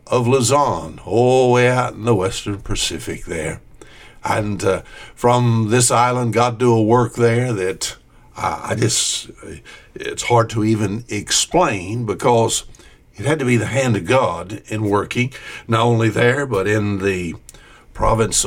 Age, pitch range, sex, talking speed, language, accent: 60-79, 110-135 Hz, male, 155 wpm, English, American